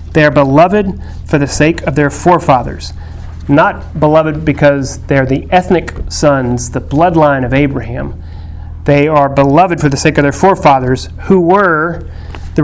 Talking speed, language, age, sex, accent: 155 wpm, English, 40-59, male, American